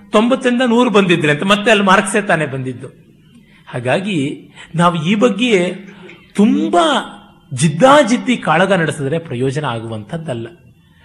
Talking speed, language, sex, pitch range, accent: 105 wpm, Kannada, male, 135-190 Hz, native